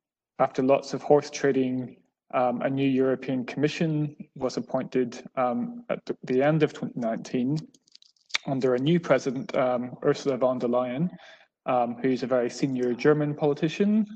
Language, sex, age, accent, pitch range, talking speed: English, male, 20-39, British, 125-150 Hz, 145 wpm